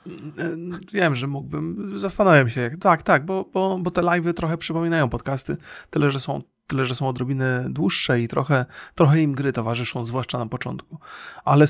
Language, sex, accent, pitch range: Polish, male, native, 125-170 Hz